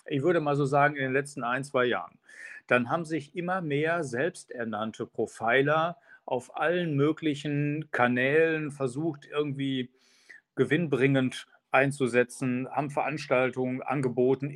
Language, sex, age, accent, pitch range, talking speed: German, male, 40-59, German, 125-155 Hz, 120 wpm